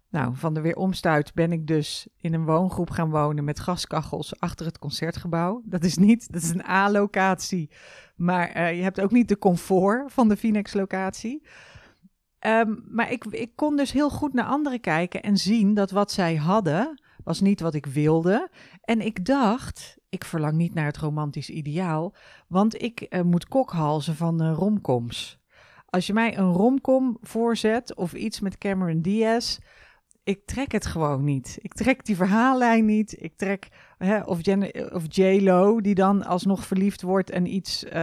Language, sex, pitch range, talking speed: Dutch, female, 165-215 Hz, 175 wpm